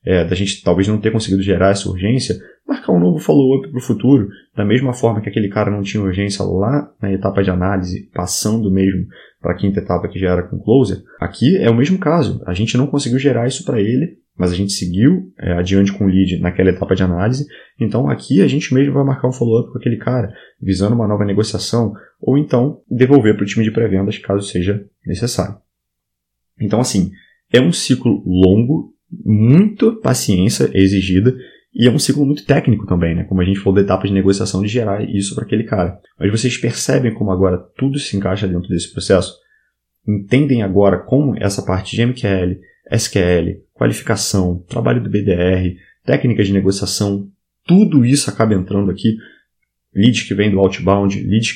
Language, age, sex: Portuguese, 20-39, male